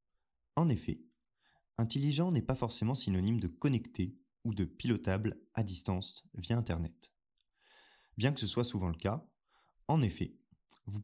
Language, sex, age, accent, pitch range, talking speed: French, male, 20-39, French, 95-130 Hz, 140 wpm